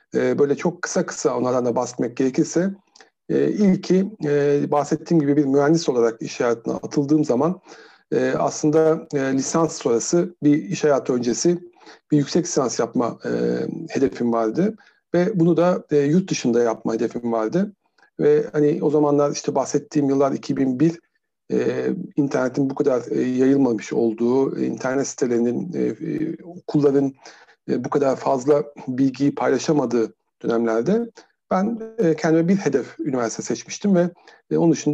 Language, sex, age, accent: Turkish, male, 50-69, native